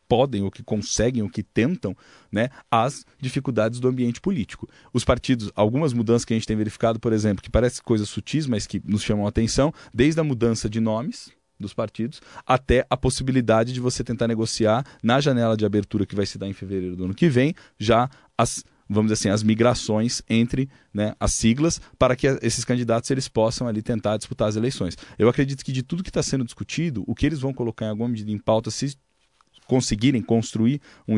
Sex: male